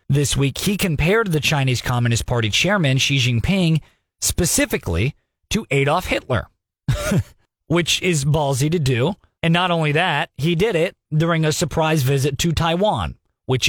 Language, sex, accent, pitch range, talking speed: English, male, American, 125-165 Hz, 150 wpm